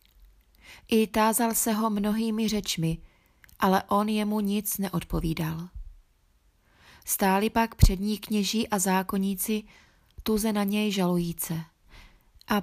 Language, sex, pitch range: Czech, female, 175-210 Hz